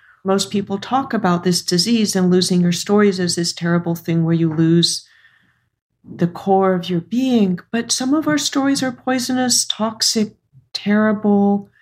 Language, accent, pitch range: English, American, 175-210 Hz